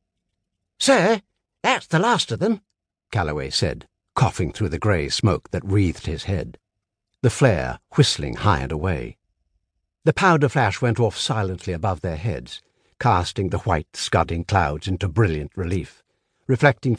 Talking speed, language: 145 wpm, English